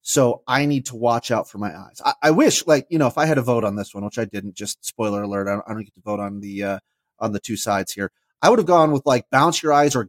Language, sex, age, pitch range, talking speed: English, male, 30-49, 110-140 Hz, 315 wpm